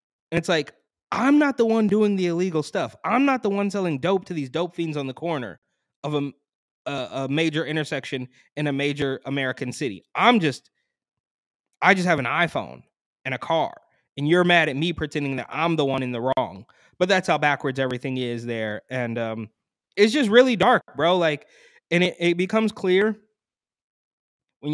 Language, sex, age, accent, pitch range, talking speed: English, male, 20-39, American, 140-175 Hz, 190 wpm